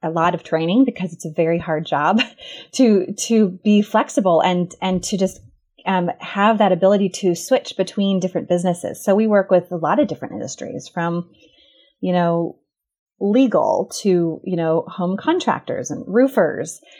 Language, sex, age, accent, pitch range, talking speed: English, female, 30-49, American, 170-225 Hz, 165 wpm